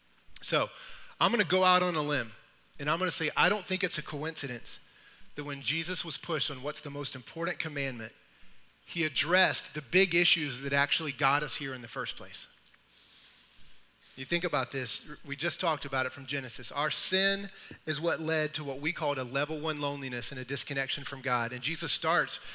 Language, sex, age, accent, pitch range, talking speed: English, male, 30-49, American, 135-160 Hz, 205 wpm